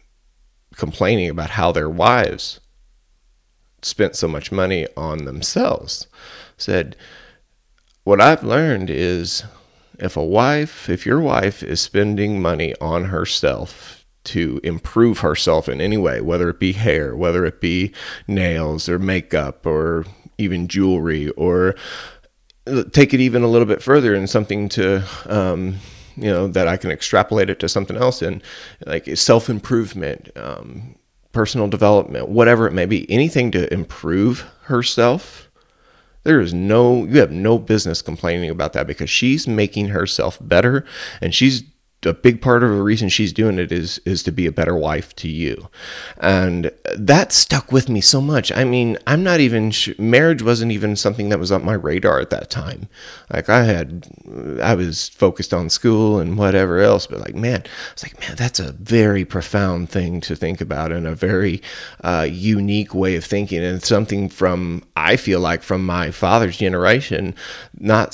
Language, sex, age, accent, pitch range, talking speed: English, male, 30-49, American, 90-115 Hz, 165 wpm